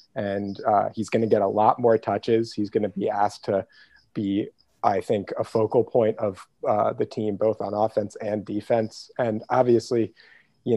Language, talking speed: English, 190 wpm